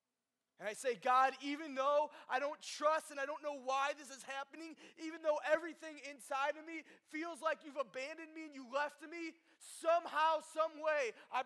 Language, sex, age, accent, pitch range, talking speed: English, male, 20-39, American, 245-300 Hz, 190 wpm